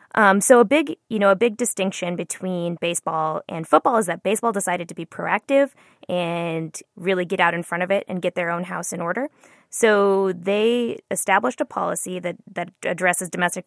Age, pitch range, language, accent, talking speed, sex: 20-39, 170-220 Hz, English, American, 195 wpm, female